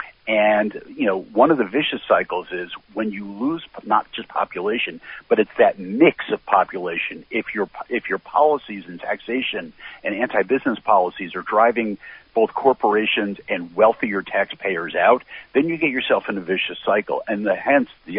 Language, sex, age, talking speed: English, male, 50-69, 165 wpm